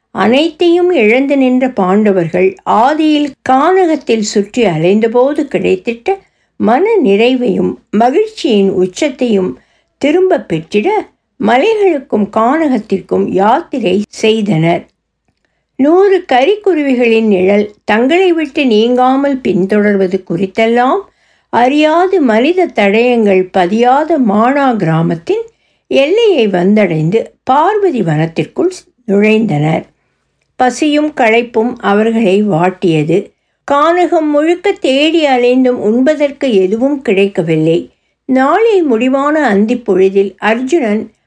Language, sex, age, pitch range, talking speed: Tamil, female, 60-79, 190-290 Hz, 75 wpm